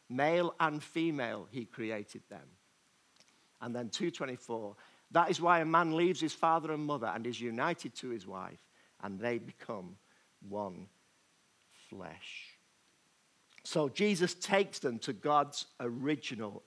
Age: 50-69